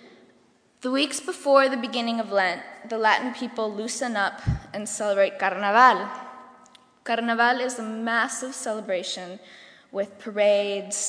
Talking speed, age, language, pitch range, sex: 120 wpm, 10-29, English, 200-250 Hz, female